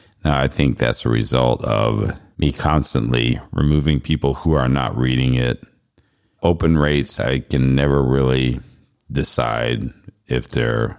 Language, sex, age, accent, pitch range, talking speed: English, male, 50-69, American, 65-85 Hz, 130 wpm